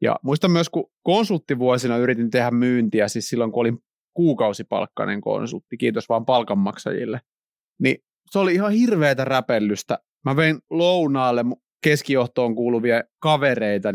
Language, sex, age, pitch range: Finnish, male, 30-49, 115-155 Hz